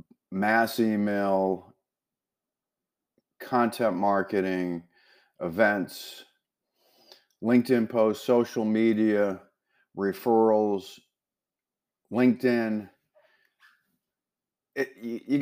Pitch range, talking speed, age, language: 90-115 Hz, 45 wpm, 50-69, English